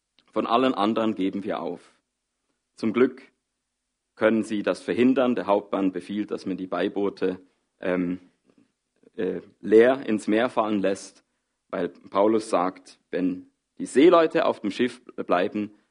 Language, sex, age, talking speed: German, male, 50-69, 135 wpm